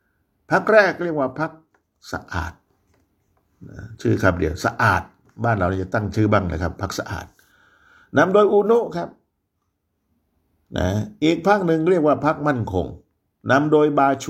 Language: Thai